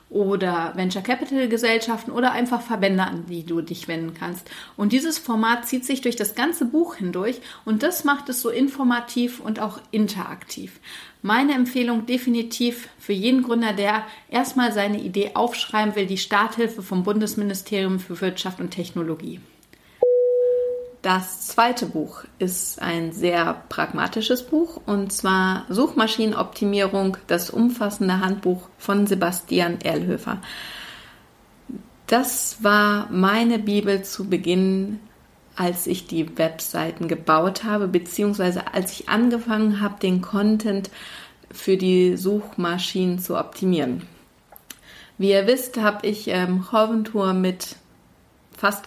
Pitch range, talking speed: 185-235 Hz, 125 wpm